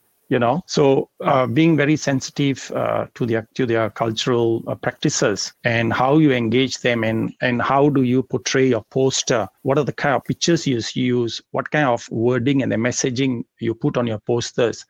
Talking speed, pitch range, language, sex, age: 190 wpm, 115-135 Hz, Punjabi, male, 50-69